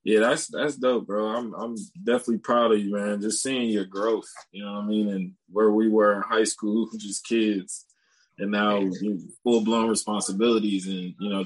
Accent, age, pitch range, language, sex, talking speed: American, 20-39, 100-115 Hz, English, male, 200 wpm